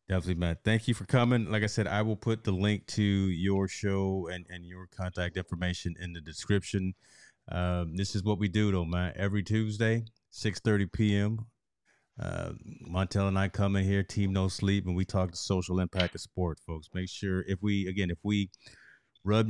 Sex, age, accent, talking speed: male, 30-49, American, 205 wpm